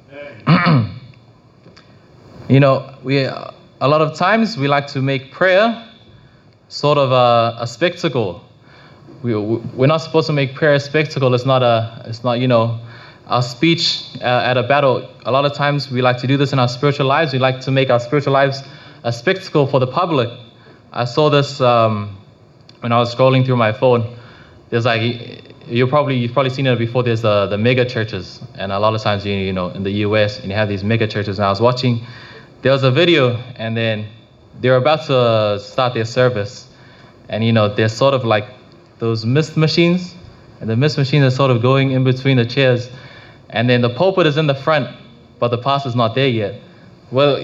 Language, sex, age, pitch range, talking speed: English, male, 20-39, 120-140 Hz, 200 wpm